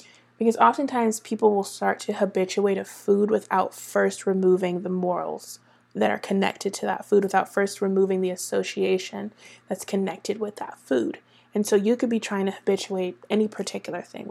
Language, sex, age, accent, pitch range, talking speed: English, female, 20-39, American, 190-215 Hz, 170 wpm